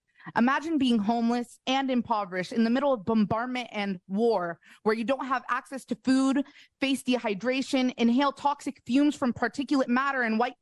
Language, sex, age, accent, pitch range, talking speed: English, female, 20-39, American, 200-250 Hz, 165 wpm